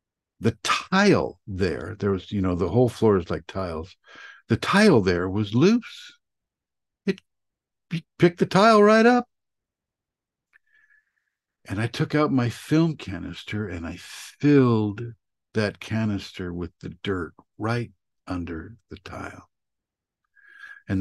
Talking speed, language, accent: 130 wpm, English, American